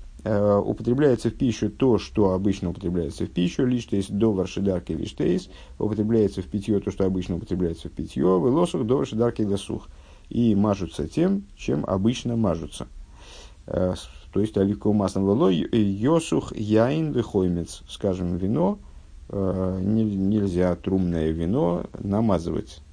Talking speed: 125 wpm